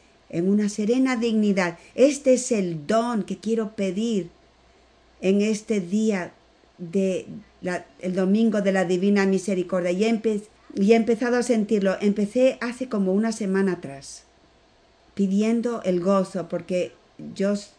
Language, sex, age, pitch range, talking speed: Spanish, female, 50-69, 190-235 Hz, 125 wpm